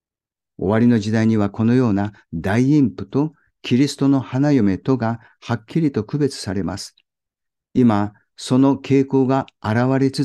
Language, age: Japanese, 50-69